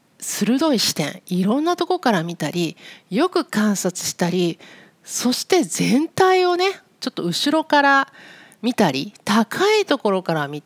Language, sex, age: Japanese, female, 40-59